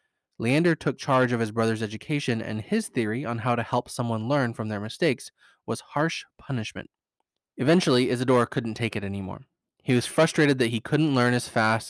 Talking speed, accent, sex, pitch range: 185 wpm, American, male, 115-145 Hz